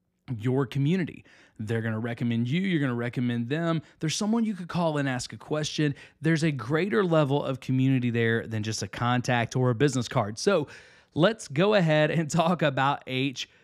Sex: male